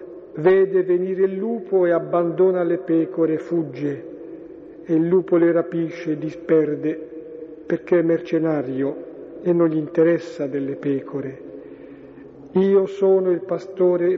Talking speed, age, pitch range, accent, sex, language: 125 wpm, 50-69, 155-175 Hz, native, male, Italian